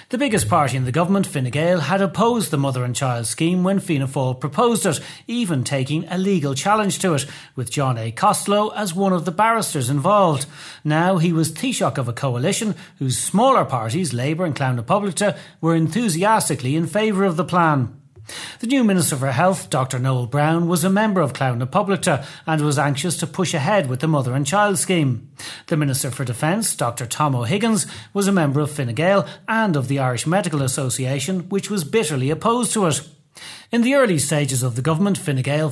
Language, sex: English, male